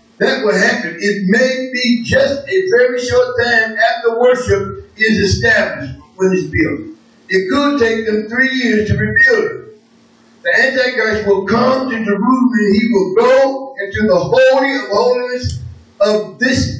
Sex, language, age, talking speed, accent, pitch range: male, English, 50-69, 155 wpm, American, 170-260 Hz